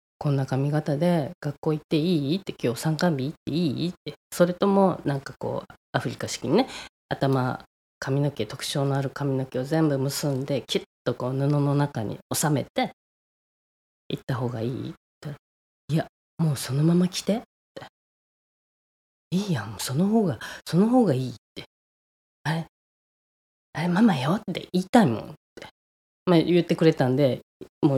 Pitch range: 130-170 Hz